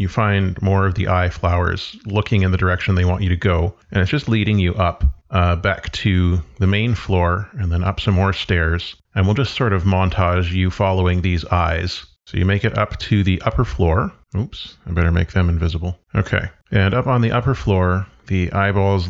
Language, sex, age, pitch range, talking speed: English, male, 40-59, 90-105 Hz, 215 wpm